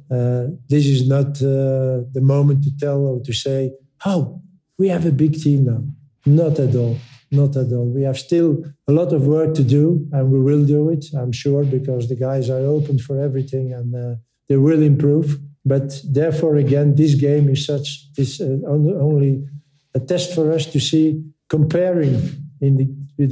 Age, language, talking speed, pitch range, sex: 50-69, English, 190 wpm, 130-145 Hz, male